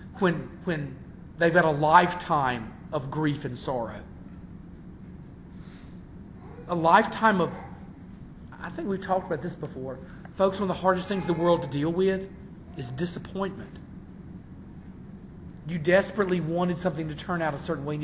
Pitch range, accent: 145-185 Hz, American